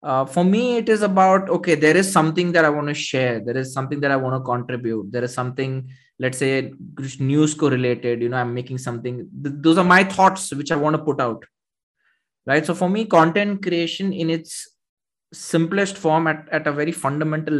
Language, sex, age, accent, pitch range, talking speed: Hindi, male, 20-39, native, 130-175 Hz, 210 wpm